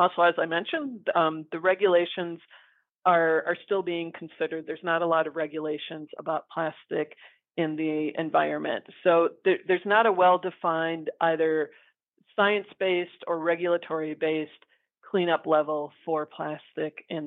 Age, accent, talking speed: 40-59, American, 130 wpm